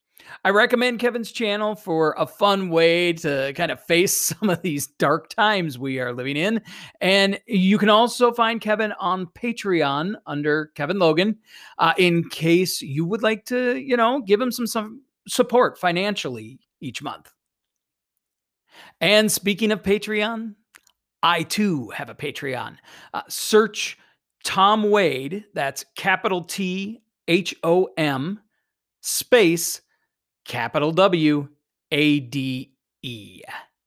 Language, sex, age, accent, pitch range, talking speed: English, male, 40-59, American, 165-215 Hz, 130 wpm